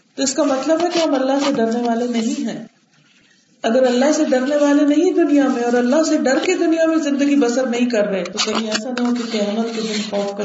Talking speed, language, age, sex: 235 wpm, Urdu, 40-59, female